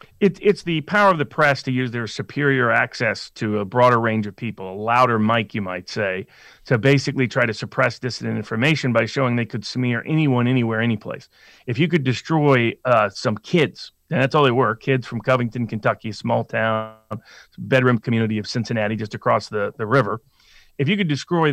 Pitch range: 115-135 Hz